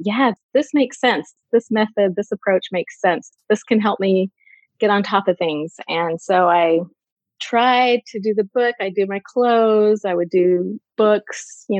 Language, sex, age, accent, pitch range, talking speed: English, female, 30-49, American, 185-240 Hz, 185 wpm